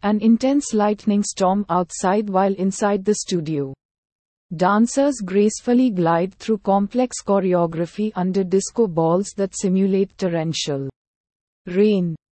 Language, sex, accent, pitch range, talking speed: English, female, Indian, 170-220 Hz, 105 wpm